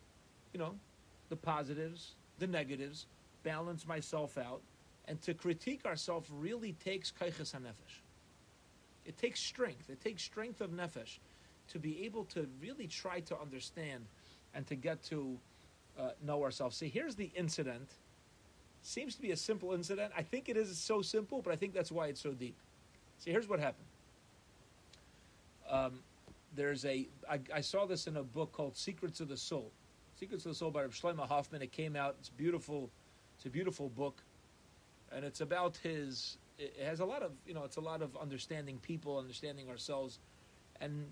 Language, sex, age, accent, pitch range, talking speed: English, male, 40-59, American, 130-170 Hz, 175 wpm